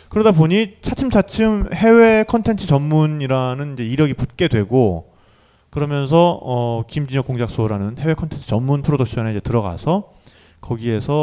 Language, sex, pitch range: Korean, male, 115-165 Hz